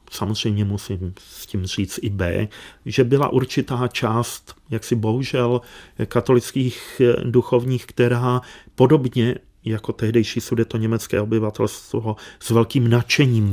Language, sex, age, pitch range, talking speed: Czech, male, 40-59, 100-120 Hz, 115 wpm